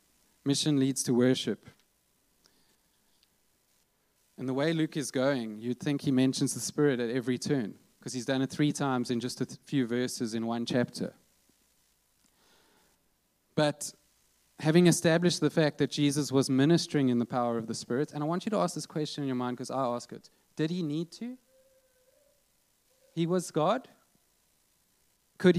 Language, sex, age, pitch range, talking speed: English, male, 30-49, 130-170 Hz, 165 wpm